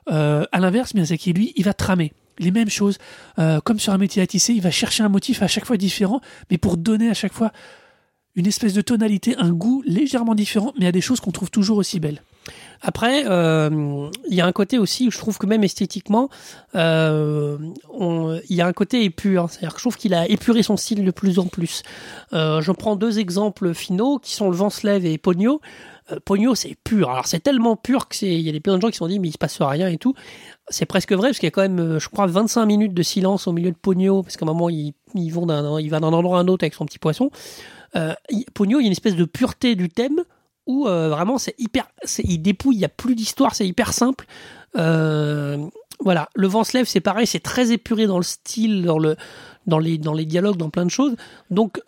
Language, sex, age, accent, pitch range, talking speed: French, male, 30-49, French, 170-225 Hz, 240 wpm